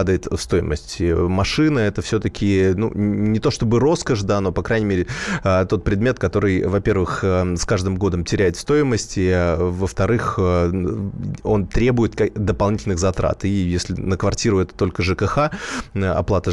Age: 20-39